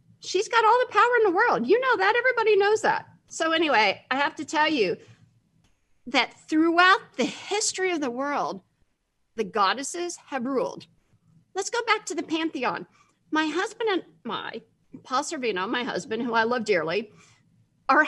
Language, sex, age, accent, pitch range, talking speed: English, female, 50-69, American, 280-400 Hz, 170 wpm